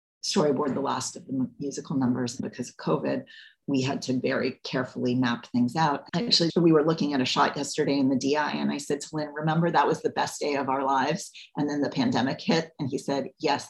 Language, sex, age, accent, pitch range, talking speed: English, female, 40-59, American, 140-180 Hz, 230 wpm